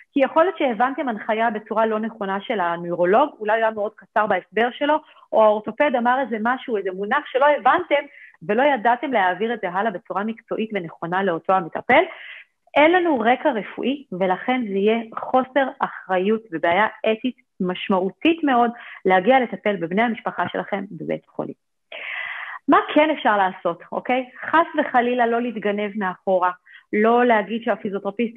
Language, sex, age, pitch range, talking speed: English, female, 40-59, 195-255 Hz, 120 wpm